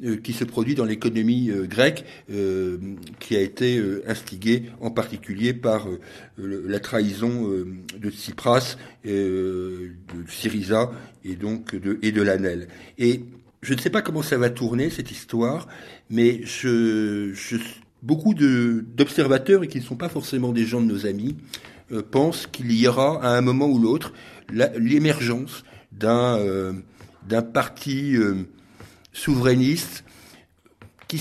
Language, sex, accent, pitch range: French, male, French, 105-135 Hz